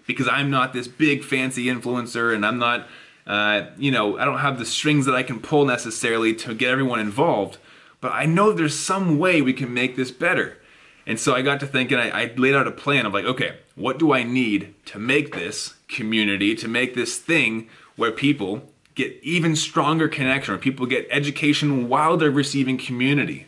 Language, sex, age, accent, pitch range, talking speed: English, male, 20-39, American, 120-150 Hz, 200 wpm